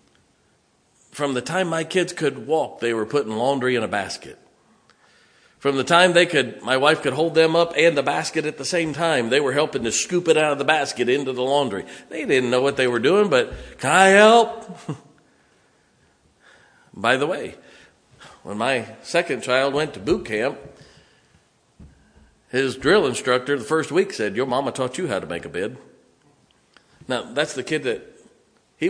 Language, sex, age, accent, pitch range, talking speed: English, male, 50-69, American, 140-175 Hz, 185 wpm